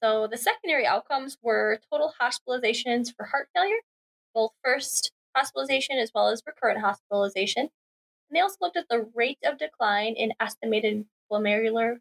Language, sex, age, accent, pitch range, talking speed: English, female, 10-29, American, 210-245 Hz, 150 wpm